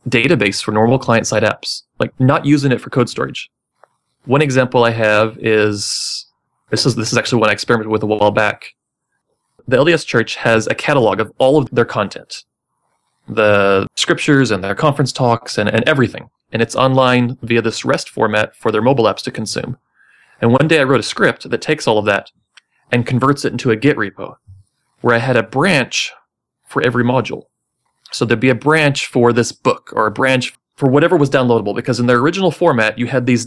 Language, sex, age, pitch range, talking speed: English, male, 30-49, 110-135 Hz, 200 wpm